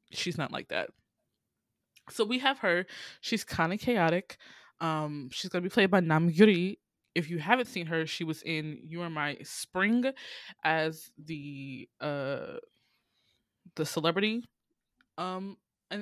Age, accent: 20-39, American